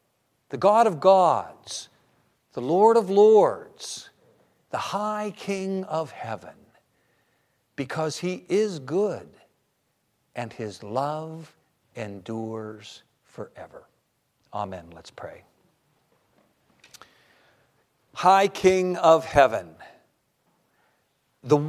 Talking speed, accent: 85 wpm, American